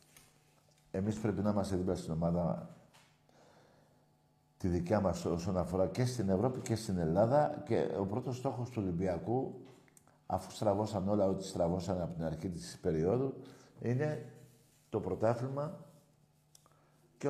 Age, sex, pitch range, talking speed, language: 60-79, male, 95-130 Hz, 130 wpm, Greek